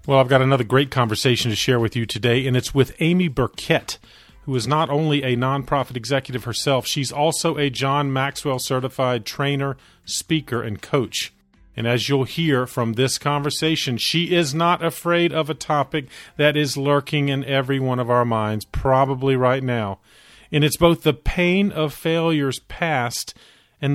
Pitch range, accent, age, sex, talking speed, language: 120-145 Hz, American, 40-59, male, 175 wpm, English